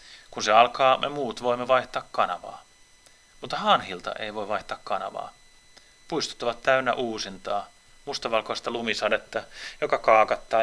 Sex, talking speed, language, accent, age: male, 125 wpm, Finnish, native, 30-49